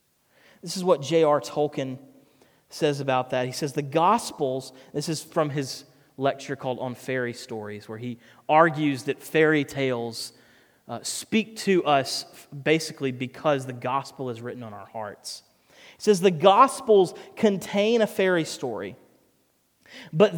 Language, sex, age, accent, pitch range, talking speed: English, male, 30-49, American, 145-220 Hz, 145 wpm